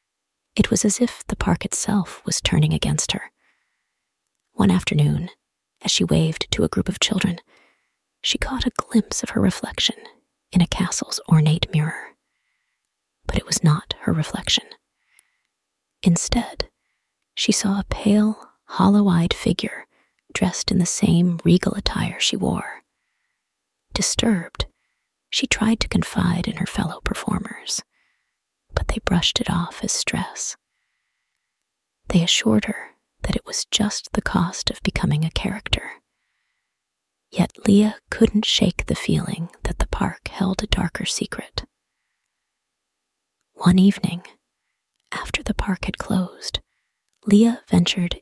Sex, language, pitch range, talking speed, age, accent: female, English, 170-215 Hz, 130 wpm, 30-49, American